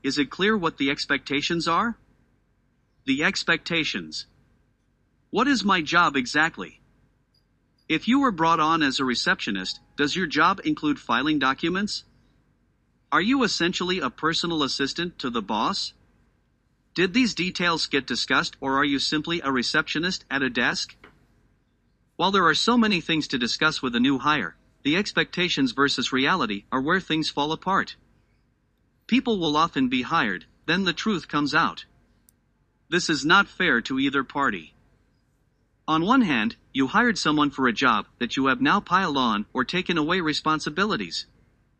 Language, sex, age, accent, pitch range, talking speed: English, male, 50-69, American, 140-195 Hz, 155 wpm